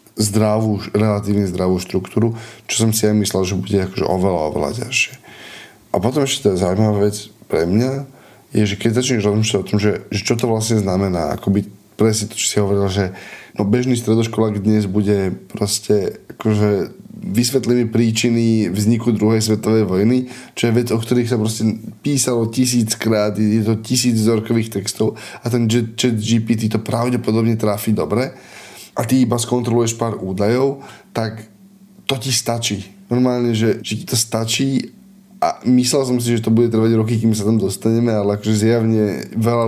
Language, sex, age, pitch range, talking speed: Slovak, male, 10-29, 105-120 Hz, 165 wpm